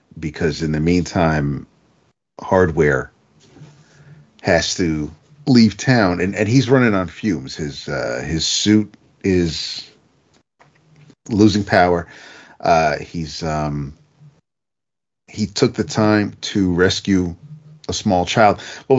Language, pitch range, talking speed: English, 85-115 Hz, 110 wpm